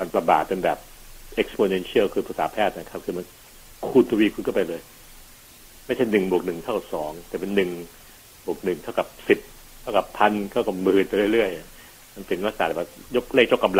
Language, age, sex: Thai, 60-79, male